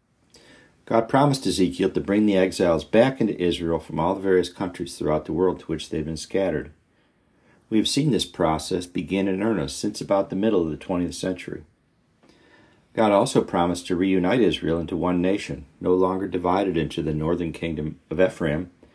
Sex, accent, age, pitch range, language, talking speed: male, American, 50-69, 80-100 Hz, English, 185 wpm